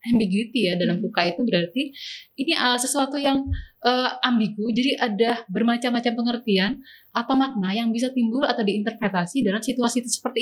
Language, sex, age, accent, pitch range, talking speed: Indonesian, female, 20-39, native, 205-250 Hz, 155 wpm